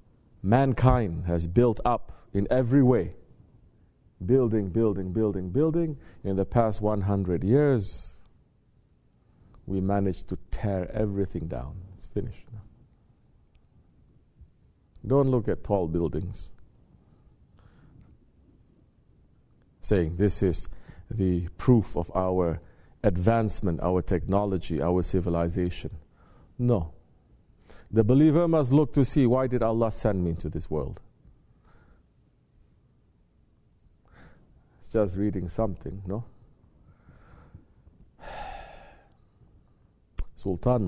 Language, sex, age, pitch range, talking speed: English, male, 50-69, 90-125 Hz, 90 wpm